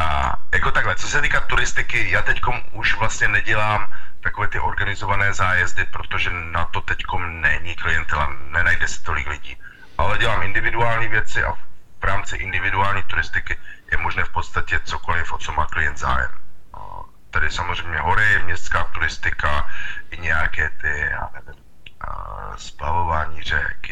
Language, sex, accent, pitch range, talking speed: Czech, male, native, 75-95 Hz, 145 wpm